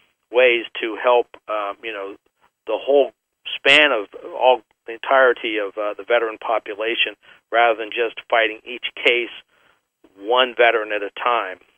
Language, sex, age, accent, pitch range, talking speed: English, male, 50-69, American, 115-145 Hz, 150 wpm